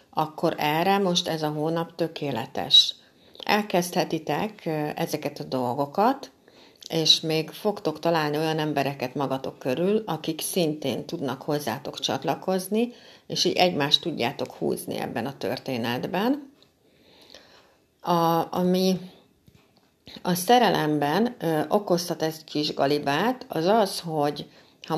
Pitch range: 145-180 Hz